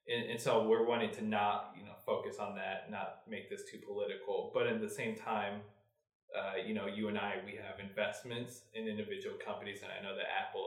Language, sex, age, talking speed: English, male, 20-39, 220 wpm